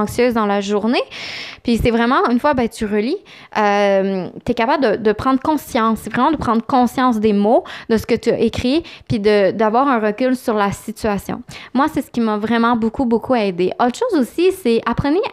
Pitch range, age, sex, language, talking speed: 220-270 Hz, 20-39, female, French, 220 wpm